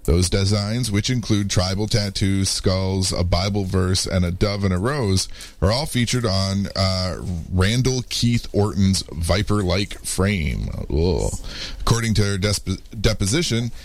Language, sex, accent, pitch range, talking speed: English, male, American, 95-115 Hz, 130 wpm